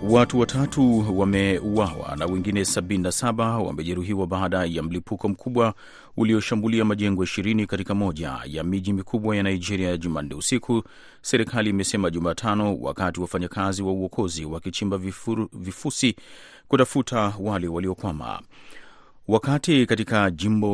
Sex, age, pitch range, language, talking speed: male, 30-49, 90-110 Hz, Swahili, 115 wpm